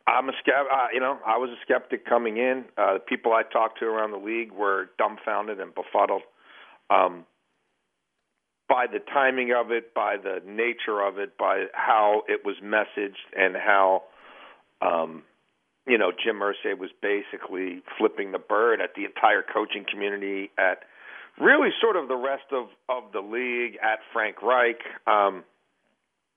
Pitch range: 110-145 Hz